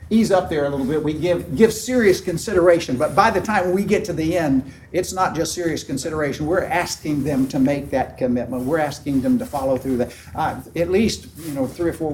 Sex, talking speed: male, 230 wpm